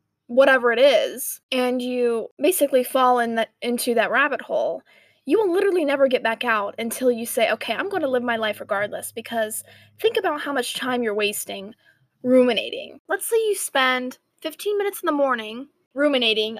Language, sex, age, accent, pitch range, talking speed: English, female, 20-39, American, 240-295 Hz, 180 wpm